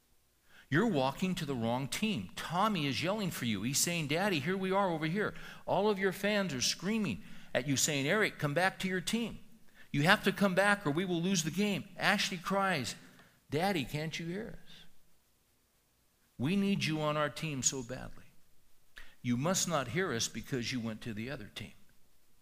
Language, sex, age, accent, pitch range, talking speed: English, male, 60-79, American, 110-175 Hz, 195 wpm